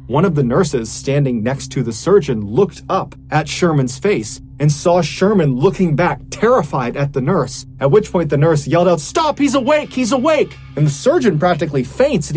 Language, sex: English, male